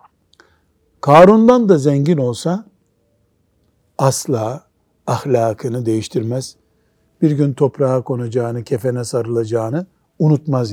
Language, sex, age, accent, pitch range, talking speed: Turkish, male, 60-79, native, 120-160 Hz, 80 wpm